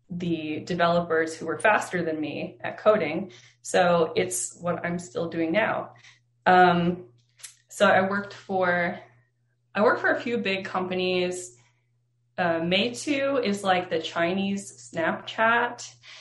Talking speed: 130 wpm